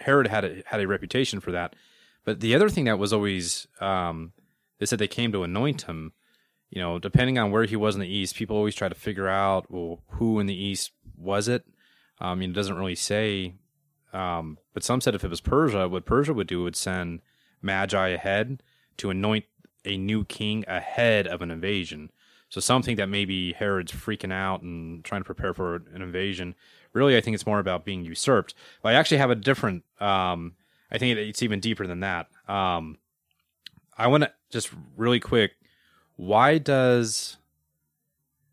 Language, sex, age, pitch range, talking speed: English, male, 30-49, 90-115 Hz, 190 wpm